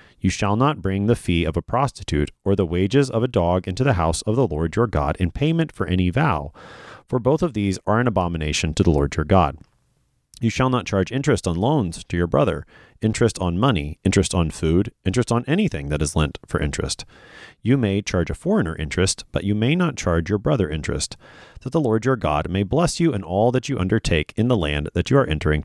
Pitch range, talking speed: 85-120 Hz, 230 wpm